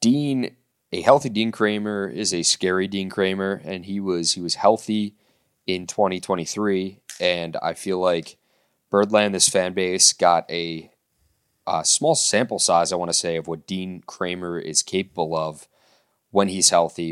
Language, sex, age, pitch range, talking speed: English, male, 20-39, 85-110 Hz, 160 wpm